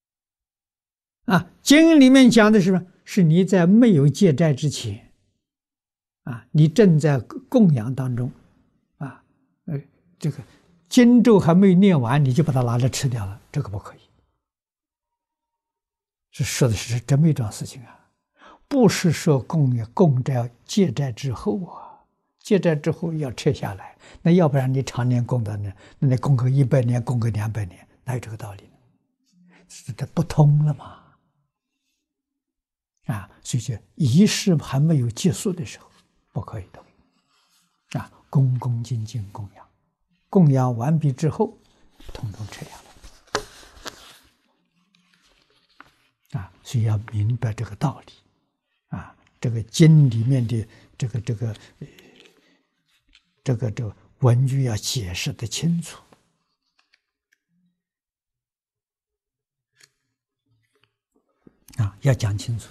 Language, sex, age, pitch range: Chinese, male, 60-79, 120-175 Hz